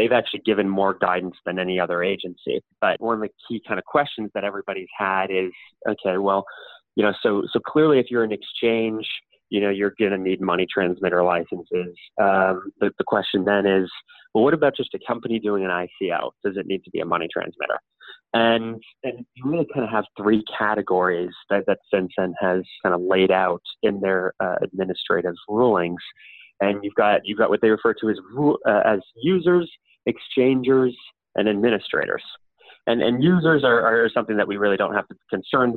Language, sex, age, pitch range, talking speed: English, male, 20-39, 95-130 Hz, 195 wpm